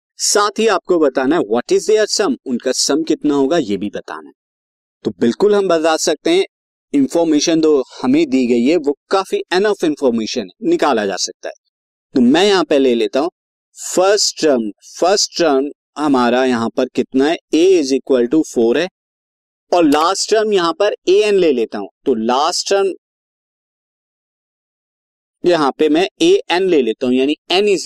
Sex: male